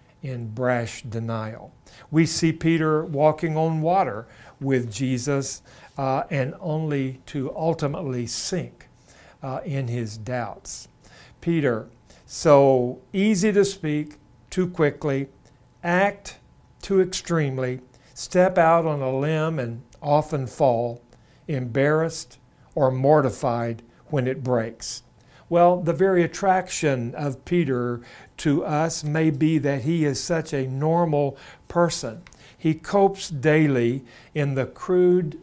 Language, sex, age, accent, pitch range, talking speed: English, male, 60-79, American, 130-165 Hz, 115 wpm